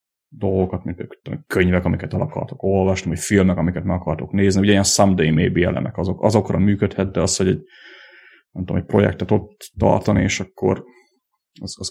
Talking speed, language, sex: 180 wpm, Hungarian, male